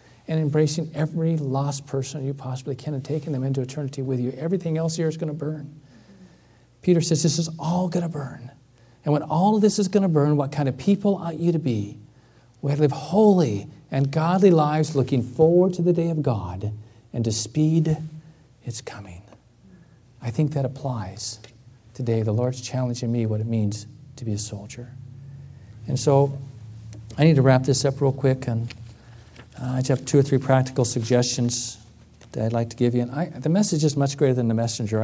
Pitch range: 115-145 Hz